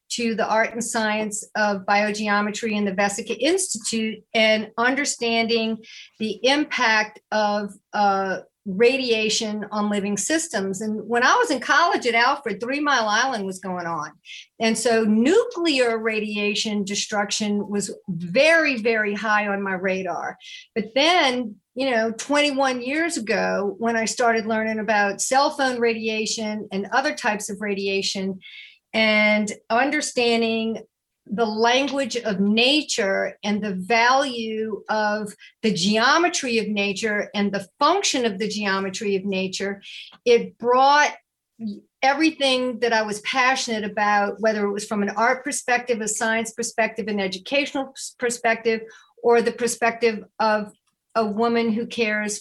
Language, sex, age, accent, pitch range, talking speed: English, female, 50-69, American, 205-240 Hz, 135 wpm